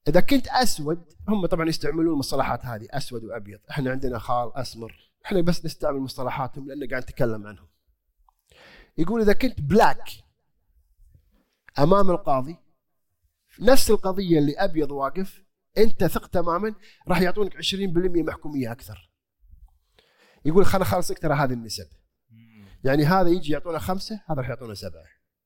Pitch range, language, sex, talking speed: 125-200 Hz, Arabic, male, 130 wpm